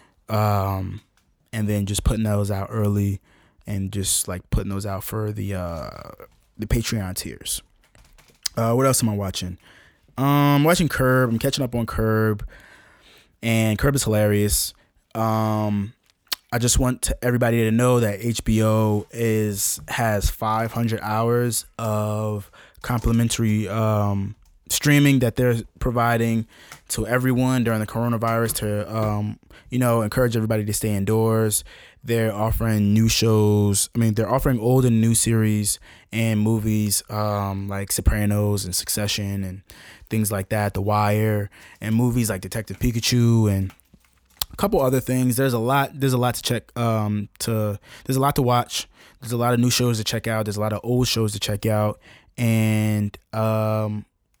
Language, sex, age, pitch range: English, male, 20-39, 105-120 Hz